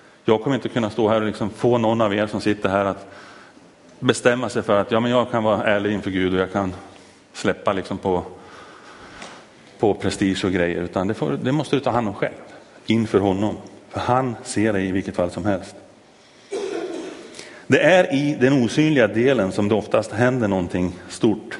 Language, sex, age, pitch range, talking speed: Swedish, male, 30-49, 100-120 Hz, 195 wpm